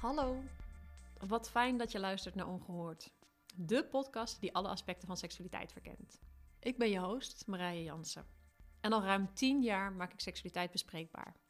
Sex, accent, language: female, Dutch, Dutch